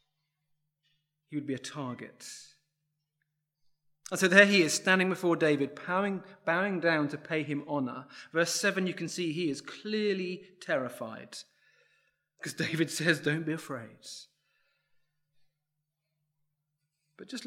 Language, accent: English, British